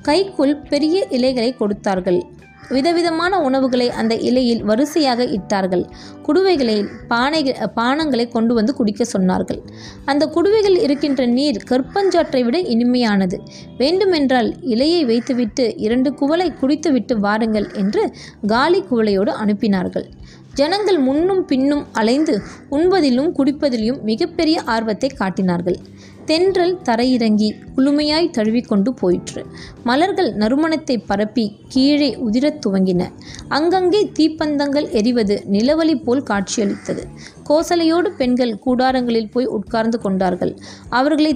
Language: Tamil